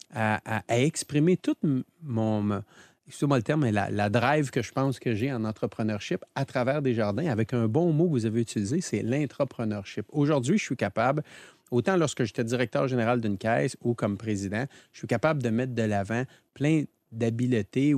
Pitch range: 115-140 Hz